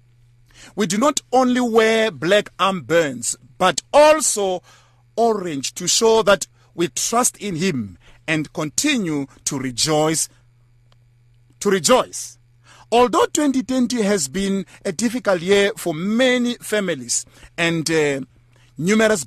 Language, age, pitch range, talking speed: English, 50-69, 125-210 Hz, 110 wpm